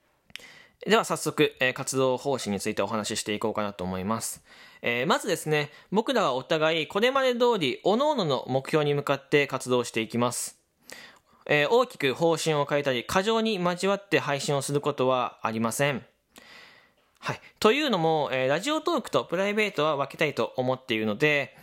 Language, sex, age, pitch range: Japanese, male, 20-39, 125-180 Hz